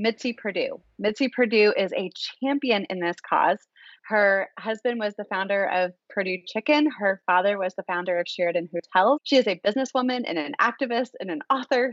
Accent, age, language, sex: American, 30-49, English, female